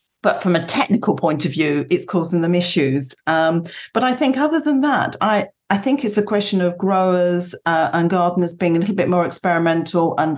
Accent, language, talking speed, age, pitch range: British, English, 210 wpm, 40-59, 150-180 Hz